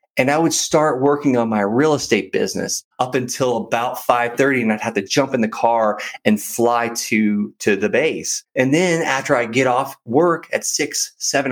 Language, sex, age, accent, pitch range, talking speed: English, male, 30-49, American, 110-150 Hz, 200 wpm